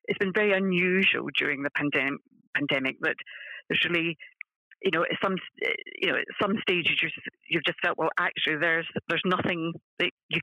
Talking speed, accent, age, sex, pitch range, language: 175 wpm, British, 40-59, female, 150-170 Hz, English